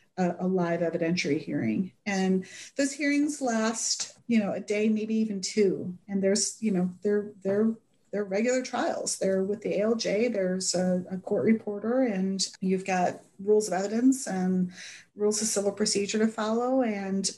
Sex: female